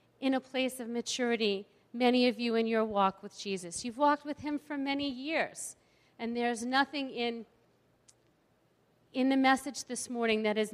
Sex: female